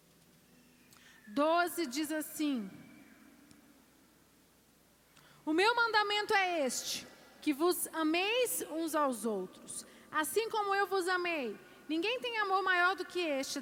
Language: Portuguese